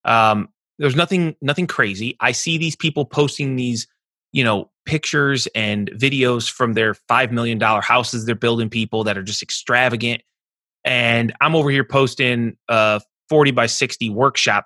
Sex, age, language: male, 20-39, English